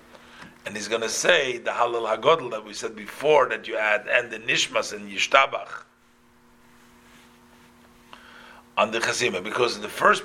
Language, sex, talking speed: English, male, 150 wpm